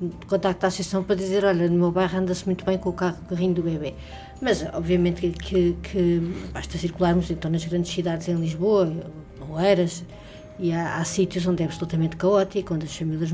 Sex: female